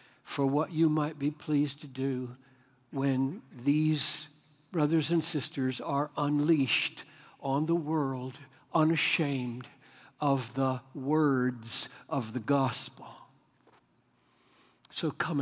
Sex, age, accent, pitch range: male, 60-79, American, 125-155 Hz